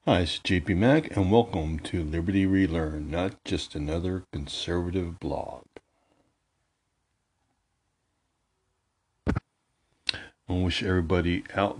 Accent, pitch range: American, 85-105 Hz